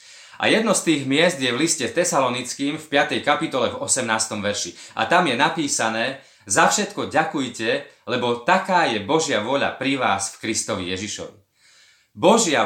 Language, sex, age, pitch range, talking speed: Slovak, male, 30-49, 115-155 Hz, 155 wpm